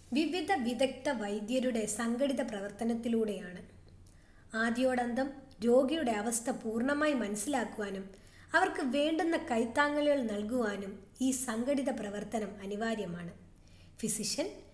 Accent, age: native, 20-39